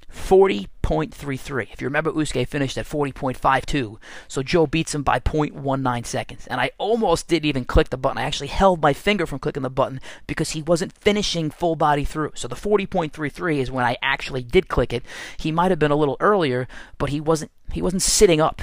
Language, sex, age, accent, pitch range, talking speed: English, male, 30-49, American, 125-155 Hz, 205 wpm